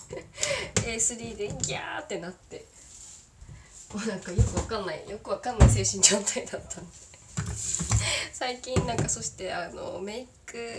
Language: Japanese